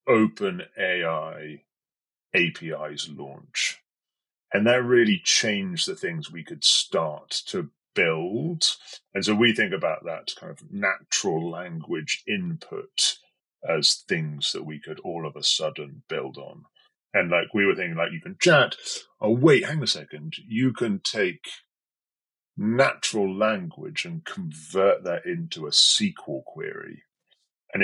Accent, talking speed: British, 140 wpm